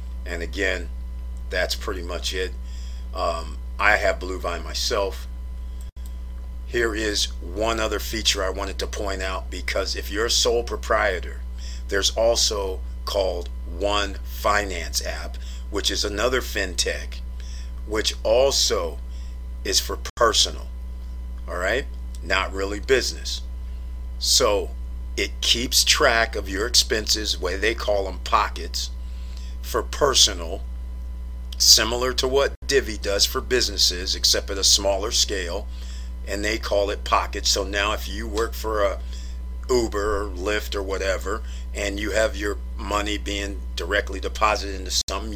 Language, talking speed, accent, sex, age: English, 130 wpm, American, male, 50-69